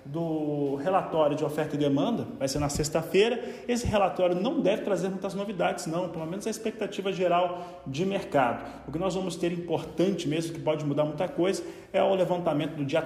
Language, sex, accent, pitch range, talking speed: Portuguese, male, Brazilian, 150-190 Hz, 195 wpm